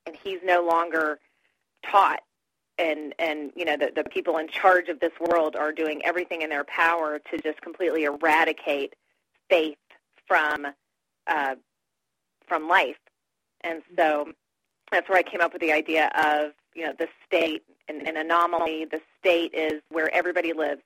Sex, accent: female, American